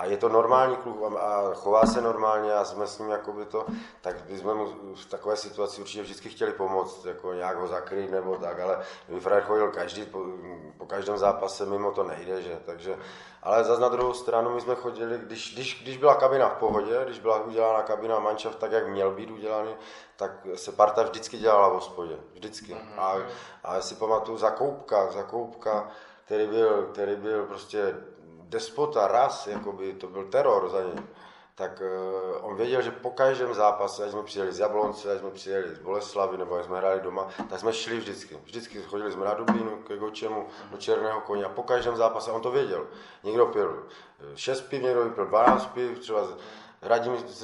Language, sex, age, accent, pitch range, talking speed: Czech, male, 20-39, native, 100-120 Hz, 195 wpm